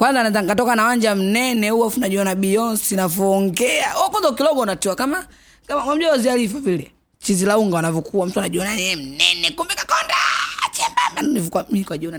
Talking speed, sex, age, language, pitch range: 155 wpm, female, 20-39, Swahili, 160-215 Hz